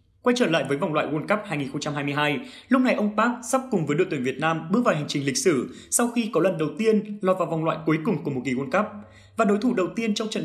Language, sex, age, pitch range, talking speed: Vietnamese, male, 20-39, 155-210 Hz, 285 wpm